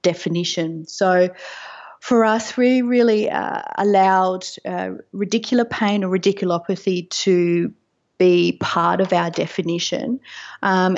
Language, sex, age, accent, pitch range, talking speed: English, female, 30-49, Australian, 175-210 Hz, 110 wpm